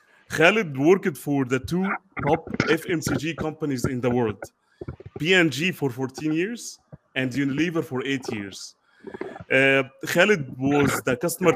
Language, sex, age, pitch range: English, male, 30-49, 135-165 Hz